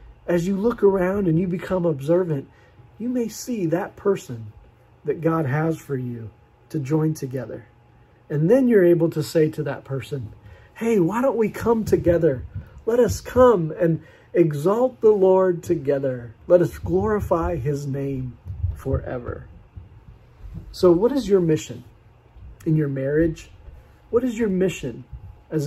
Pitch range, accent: 125-185 Hz, American